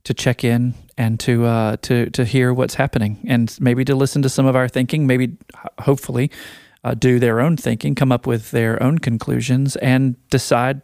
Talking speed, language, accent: 195 wpm, English, American